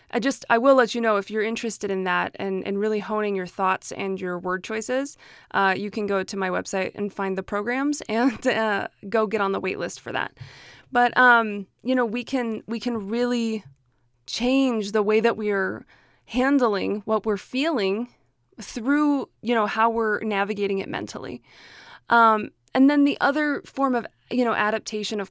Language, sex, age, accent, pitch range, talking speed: English, female, 20-39, American, 200-245 Hz, 190 wpm